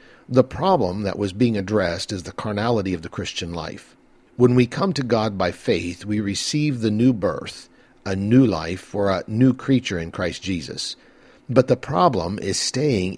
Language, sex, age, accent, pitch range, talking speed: English, male, 50-69, American, 95-125 Hz, 180 wpm